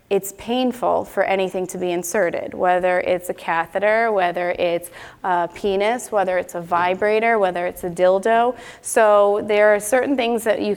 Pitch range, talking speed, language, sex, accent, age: 185-225 Hz, 165 wpm, English, female, American, 20-39